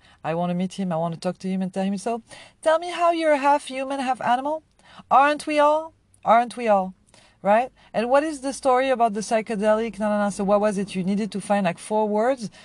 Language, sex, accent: English, female, French